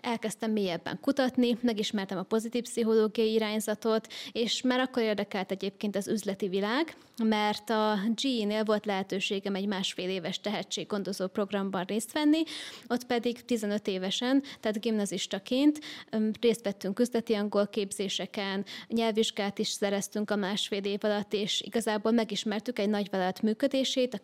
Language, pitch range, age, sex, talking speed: Hungarian, 200-235 Hz, 20-39, female, 135 wpm